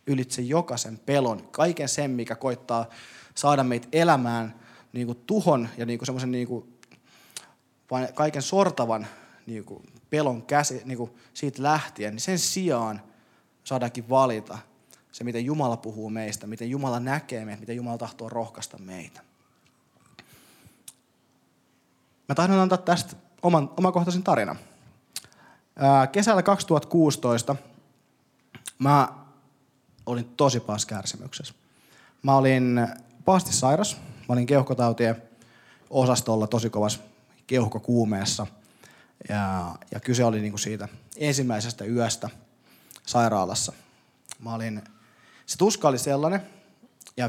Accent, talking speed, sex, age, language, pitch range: native, 110 wpm, male, 20-39, Finnish, 115-140 Hz